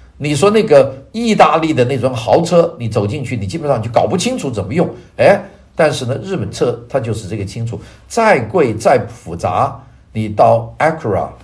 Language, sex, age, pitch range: Chinese, male, 50-69, 110-170 Hz